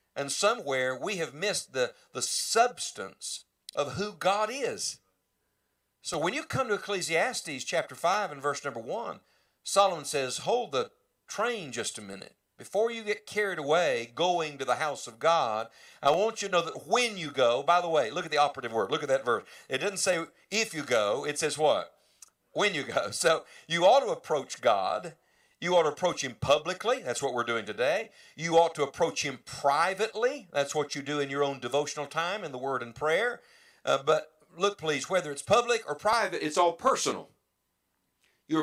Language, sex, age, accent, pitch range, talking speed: English, male, 50-69, American, 145-215 Hz, 195 wpm